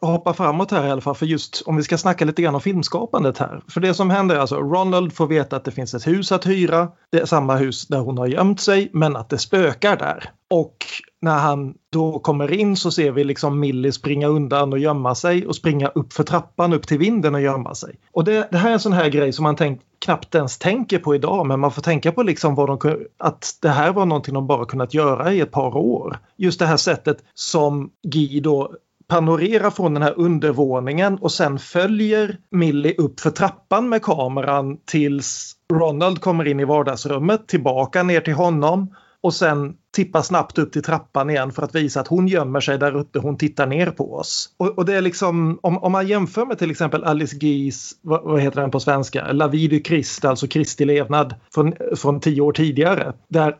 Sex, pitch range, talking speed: male, 145-180 Hz, 220 wpm